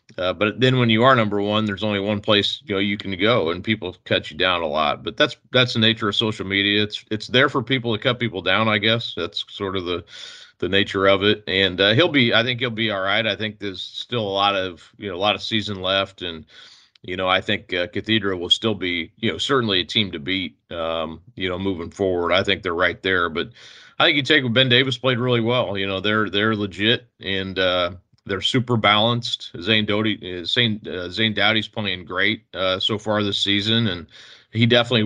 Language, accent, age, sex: English, American, 40-59, male